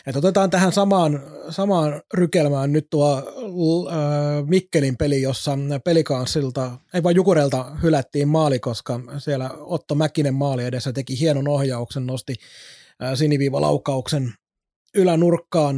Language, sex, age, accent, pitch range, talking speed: Finnish, male, 30-49, native, 135-165 Hz, 120 wpm